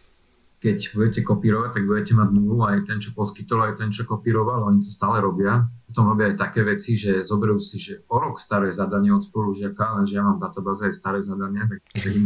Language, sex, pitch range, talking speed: Slovak, male, 100-110 Hz, 210 wpm